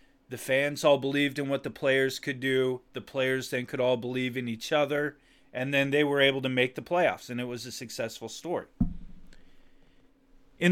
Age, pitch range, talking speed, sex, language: 30-49, 130-165 Hz, 195 wpm, male, English